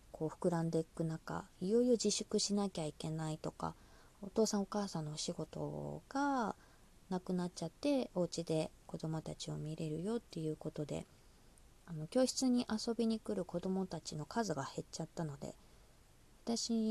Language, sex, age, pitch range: Japanese, female, 20-39, 160-225 Hz